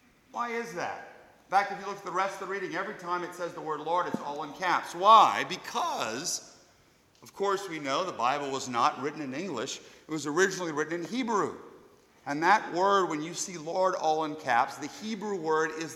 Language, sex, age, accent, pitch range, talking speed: English, male, 50-69, American, 150-195 Hz, 220 wpm